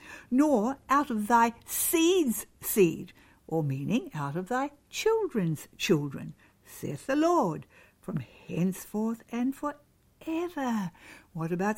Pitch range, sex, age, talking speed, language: 180-275 Hz, female, 60-79, 115 wpm, English